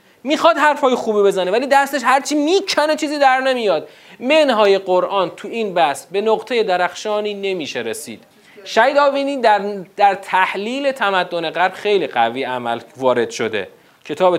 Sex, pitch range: male, 160-230 Hz